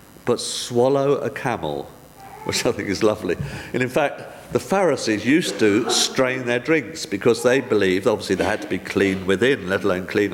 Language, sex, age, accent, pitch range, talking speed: English, male, 50-69, British, 105-135 Hz, 185 wpm